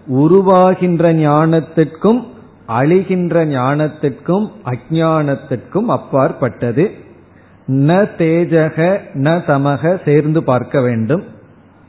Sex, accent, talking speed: male, native, 65 wpm